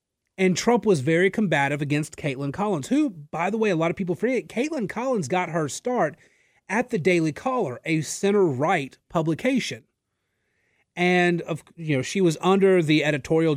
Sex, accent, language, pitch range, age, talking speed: male, American, English, 145-195 Hz, 30-49, 170 wpm